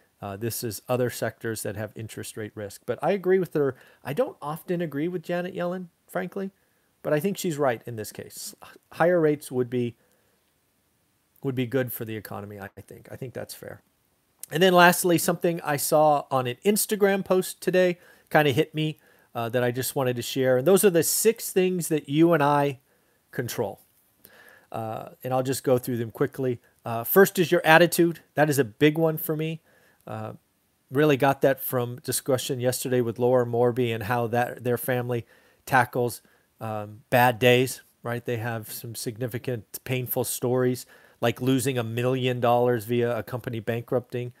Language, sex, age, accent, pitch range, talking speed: English, male, 40-59, American, 120-155 Hz, 185 wpm